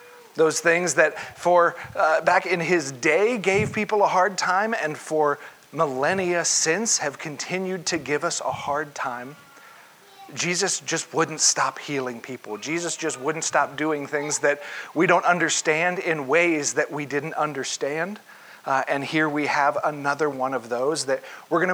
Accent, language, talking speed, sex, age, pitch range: American, English, 165 wpm, male, 40-59, 135-165 Hz